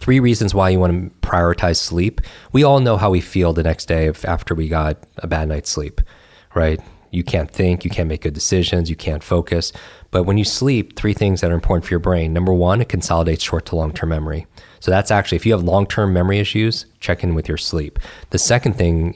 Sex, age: male, 20-39